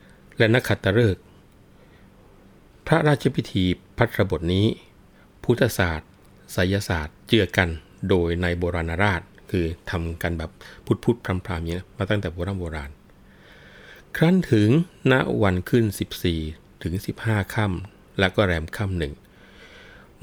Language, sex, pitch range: Thai, male, 85-105 Hz